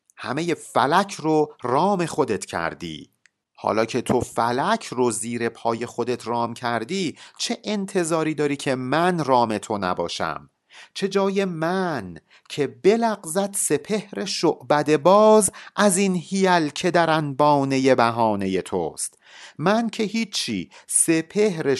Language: Persian